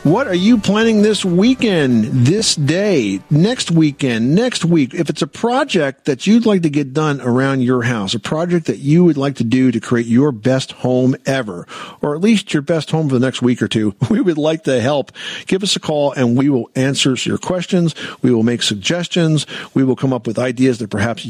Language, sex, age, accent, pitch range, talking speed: English, male, 50-69, American, 120-170 Hz, 220 wpm